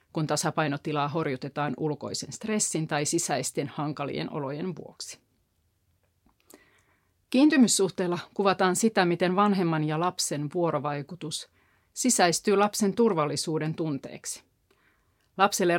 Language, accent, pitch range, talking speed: Finnish, native, 155-195 Hz, 85 wpm